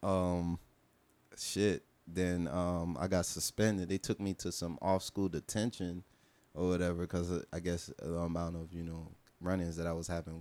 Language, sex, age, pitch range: English, male, 20-39, 80-95 Hz